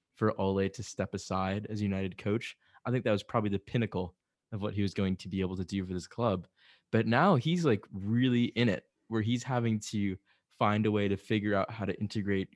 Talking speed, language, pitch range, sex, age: 235 wpm, English, 95-115 Hz, male, 20-39